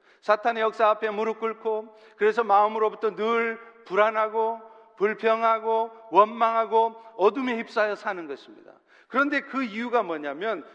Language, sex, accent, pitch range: Korean, male, native, 210-265 Hz